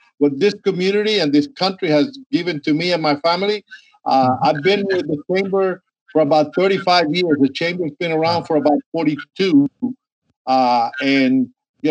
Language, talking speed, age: English, 165 wpm, 50-69